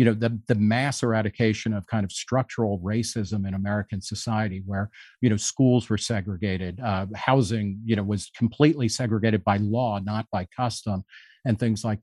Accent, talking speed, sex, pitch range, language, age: American, 175 wpm, male, 110-140 Hz, English, 50-69